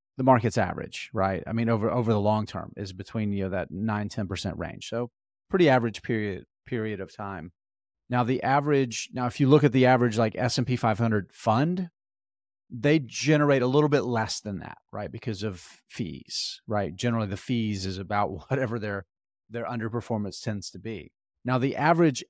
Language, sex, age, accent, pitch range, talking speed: English, male, 30-49, American, 100-140 Hz, 180 wpm